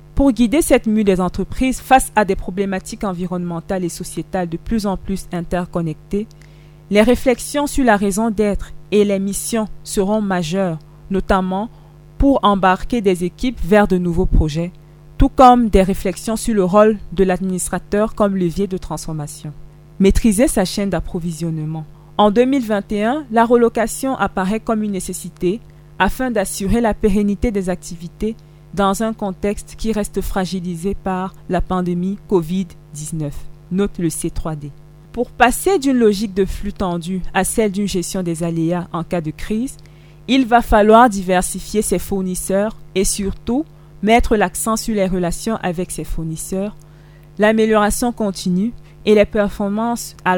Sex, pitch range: female, 170-215 Hz